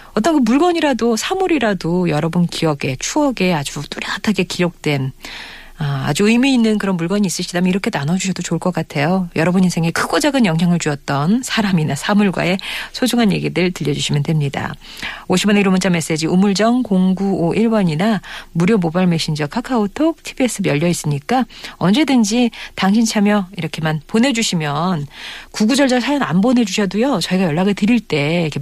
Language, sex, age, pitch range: Korean, female, 40-59, 160-220 Hz